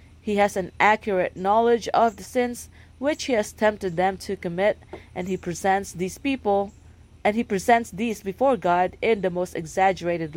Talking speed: 175 wpm